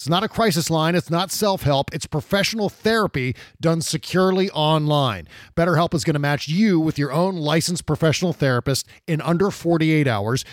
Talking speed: 170 wpm